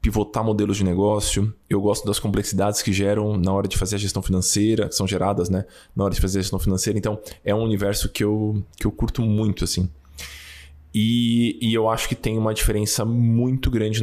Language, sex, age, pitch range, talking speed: Portuguese, male, 20-39, 100-125 Hz, 210 wpm